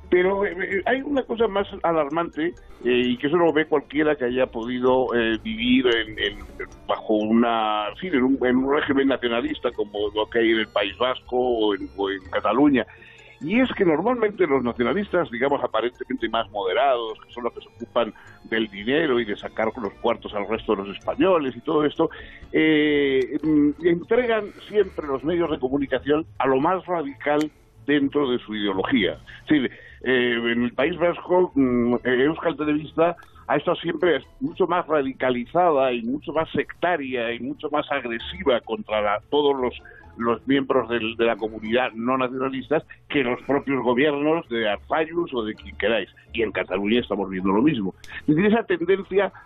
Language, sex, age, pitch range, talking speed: Spanish, male, 60-79, 115-165 Hz, 175 wpm